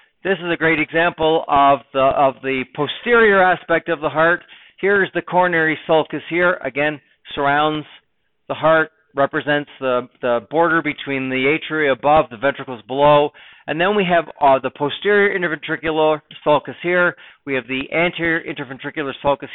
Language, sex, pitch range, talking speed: English, male, 130-160 Hz, 155 wpm